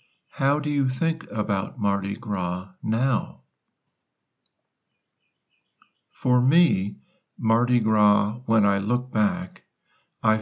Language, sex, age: Thai, male, 50-69